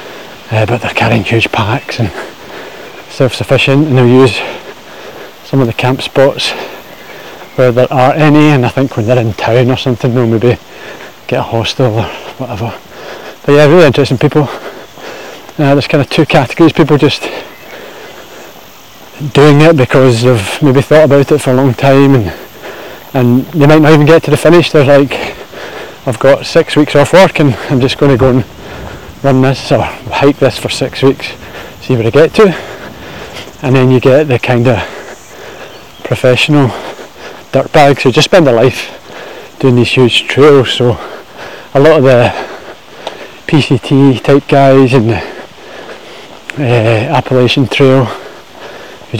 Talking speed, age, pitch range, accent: 160 wpm, 20-39, 125-150 Hz, British